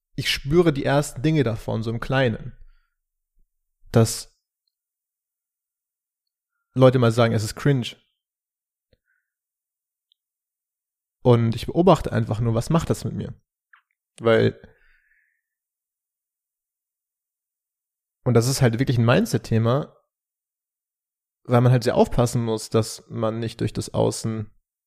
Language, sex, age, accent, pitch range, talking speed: German, male, 30-49, German, 115-140 Hz, 110 wpm